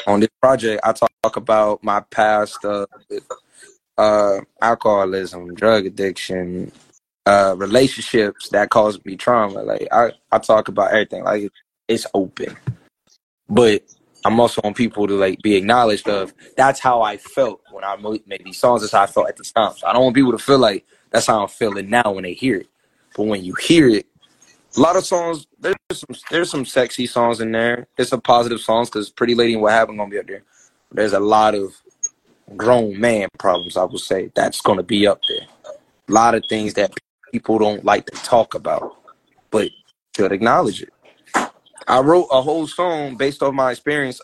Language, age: English, 20-39